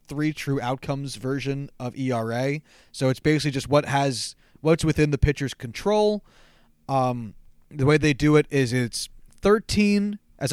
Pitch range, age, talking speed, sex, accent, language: 130-165 Hz, 30-49, 155 wpm, male, American, English